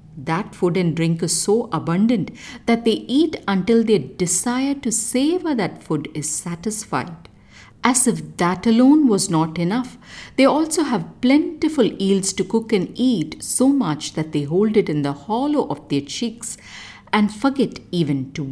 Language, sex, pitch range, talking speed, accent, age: English, female, 165-235 Hz, 165 wpm, Indian, 50-69